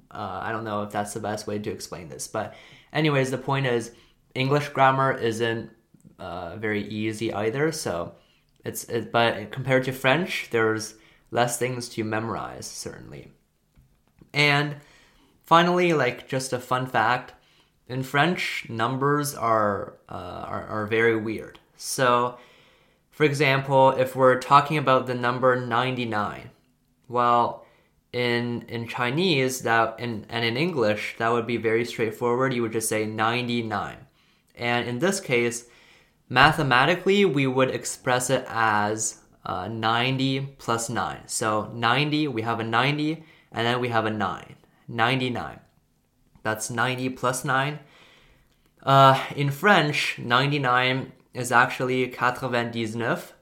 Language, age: Chinese, 20-39